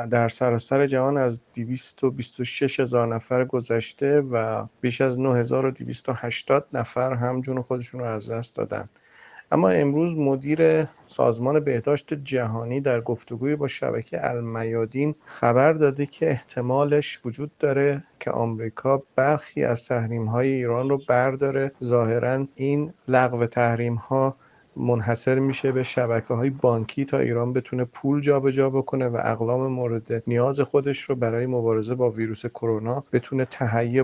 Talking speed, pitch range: 140 wpm, 120-140 Hz